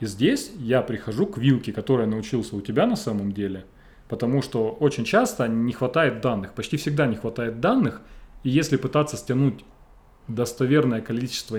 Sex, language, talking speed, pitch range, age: male, Russian, 160 wpm, 110-140 Hz, 30-49